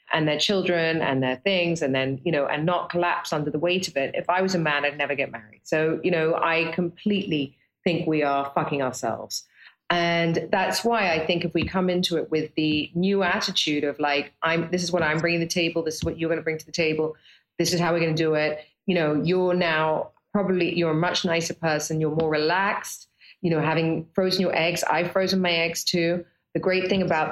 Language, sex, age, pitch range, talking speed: English, female, 30-49, 155-190 Hz, 240 wpm